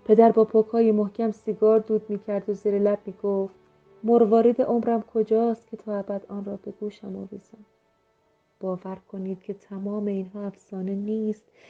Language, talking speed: Persian, 155 wpm